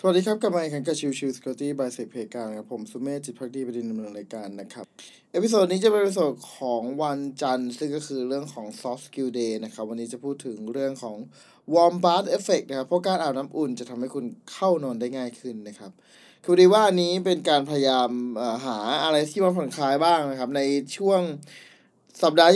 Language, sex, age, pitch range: Thai, male, 20-39, 125-175 Hz